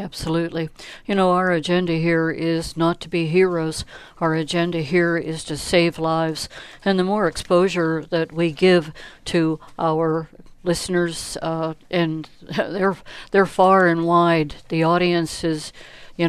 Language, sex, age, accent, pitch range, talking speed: English, female, 60-79, American, 165-185 Hz, 145 wpm